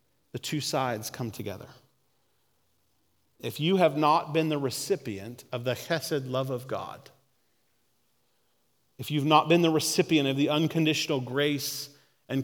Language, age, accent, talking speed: English, 40-59, American, 140 wpm